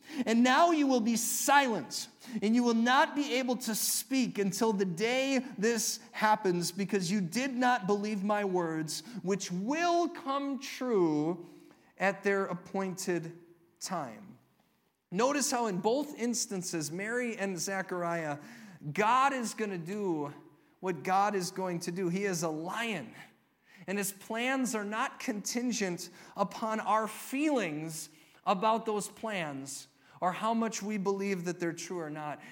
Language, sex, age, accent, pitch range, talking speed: English, male, 40-59, American, 160-220 Hz, 145 wpm